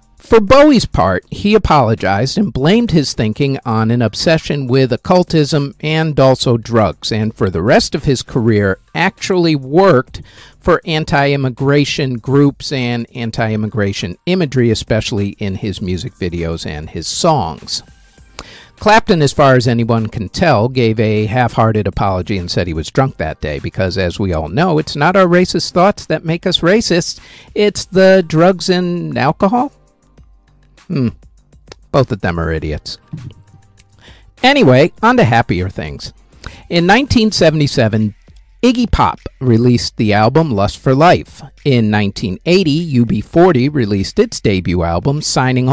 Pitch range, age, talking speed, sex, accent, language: 105-160 Hz, 50-69, 140 wpm, male, American, English